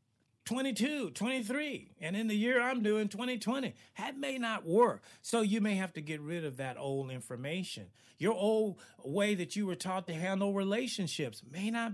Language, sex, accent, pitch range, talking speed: English, male, American, 150-215 Hz, 180 wpm